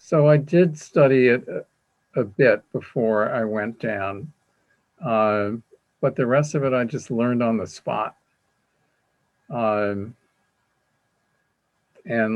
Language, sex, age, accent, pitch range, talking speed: English, male, 50-69, American, 110-130 Hz, 120 wpm